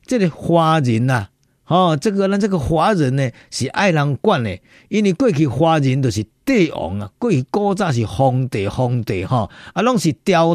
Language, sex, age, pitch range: Chinese, male, 50-69, 125-180 Hz